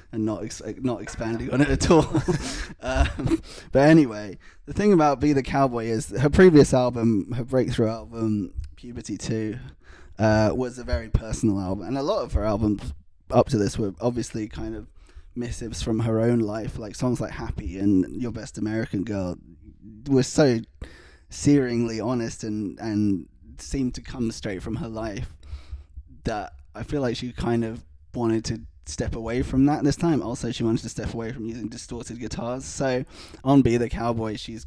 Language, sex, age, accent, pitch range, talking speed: English, male, 20-39, British, 100-125 Hz, 180 wpm